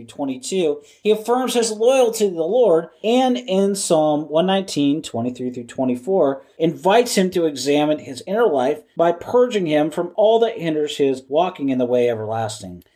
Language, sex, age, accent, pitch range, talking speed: English, male, 40-59, American, 145-200 Hz, 160 wpm